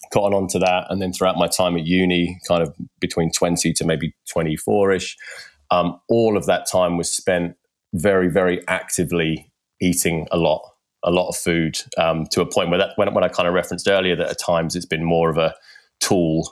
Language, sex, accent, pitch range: English, male, British, 80-90 Hz